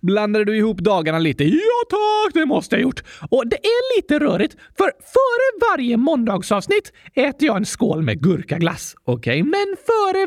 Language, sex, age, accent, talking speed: Swedish, male, 30-49, native, 175 wpm